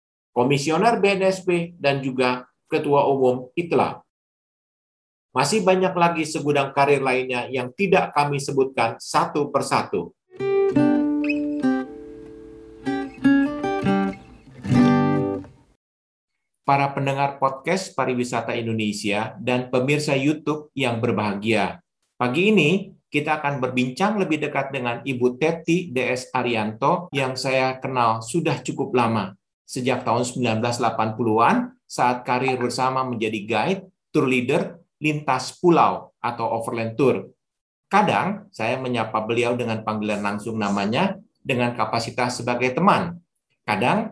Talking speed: 105 wpm